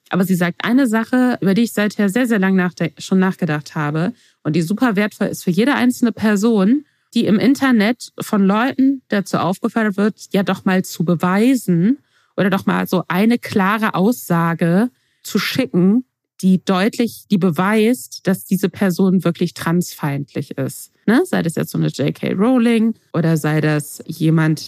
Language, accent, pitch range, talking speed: German, German, 170-230 Hz, 165 wpm